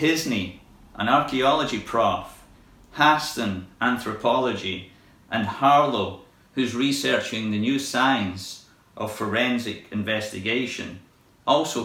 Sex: male